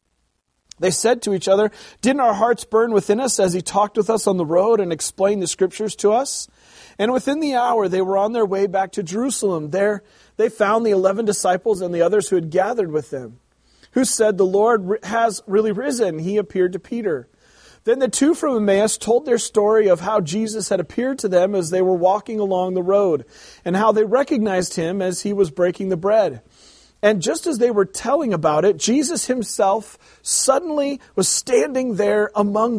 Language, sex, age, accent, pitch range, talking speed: English, male, 40-59, American, 185-240 Hz, 200 wpm